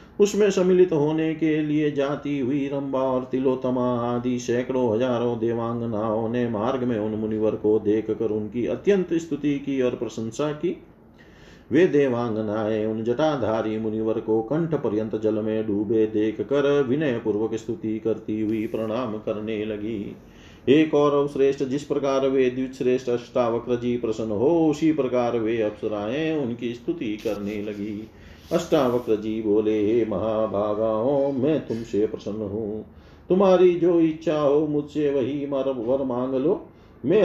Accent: native